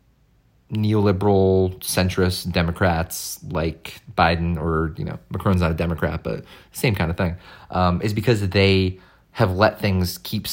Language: English